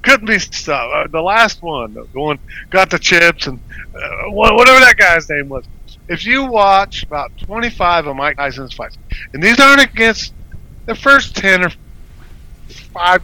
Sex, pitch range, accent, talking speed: male, 120-200 Hz, American, 165 wpm